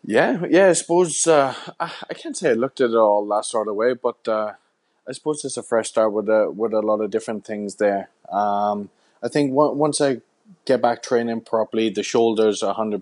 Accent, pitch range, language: Irish, 100-115 Hz, English